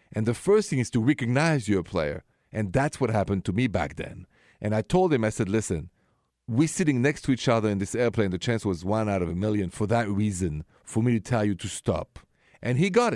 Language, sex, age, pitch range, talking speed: English, male, 40-59, 100-135 Hz, 250 wpm